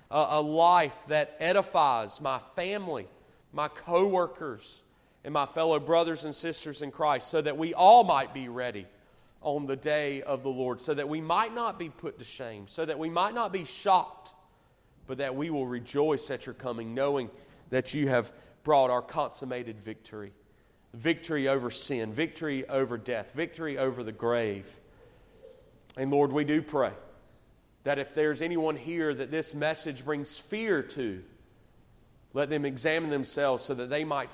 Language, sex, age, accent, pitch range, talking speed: English, male, 40-59, American, 120-150 Hz, 165 wpm